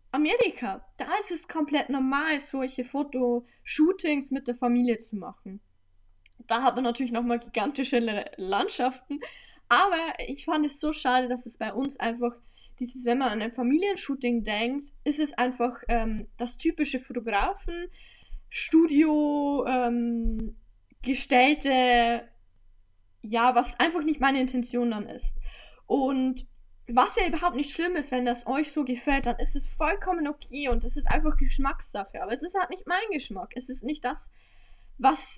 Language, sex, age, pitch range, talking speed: German, female, 10-29, 240-295 Hz, 155 wpm